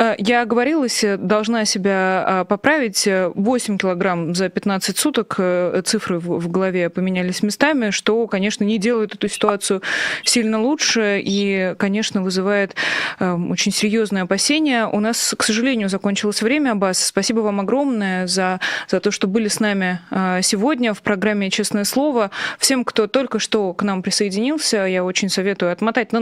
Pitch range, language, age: 185-220 Hz, Russian, 20-39